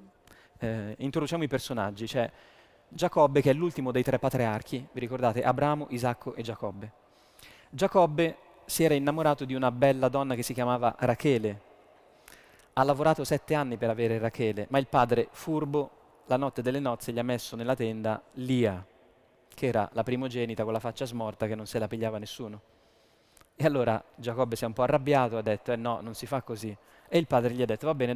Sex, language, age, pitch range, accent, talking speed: male, Italian, 20-39, 115-140 Hz, native, 195 wpm